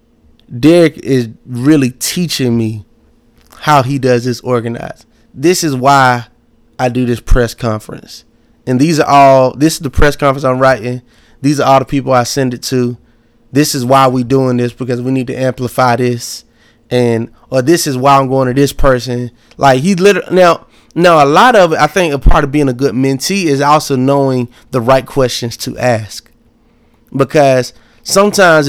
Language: English